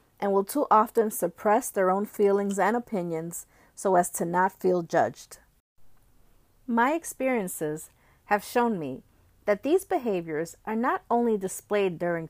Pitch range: 185-235 Hz